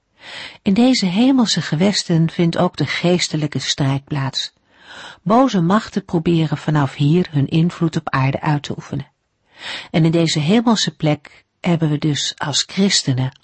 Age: 50-69